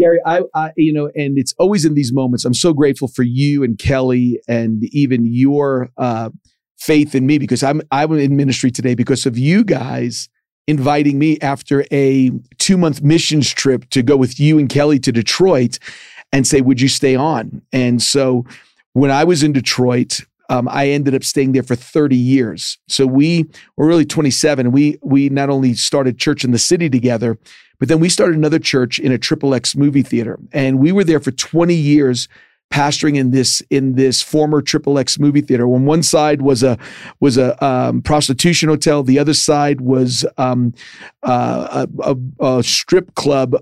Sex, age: male, 40-59